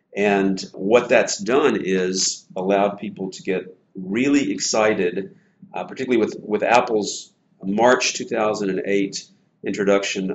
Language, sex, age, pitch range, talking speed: English, male, 50-69, 95-115 Hz, 110 wpm